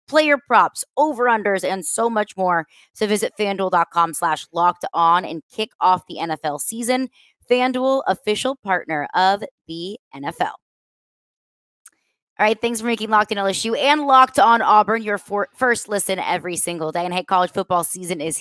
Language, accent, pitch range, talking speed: English, American, 175-220 Hz, 160 wpm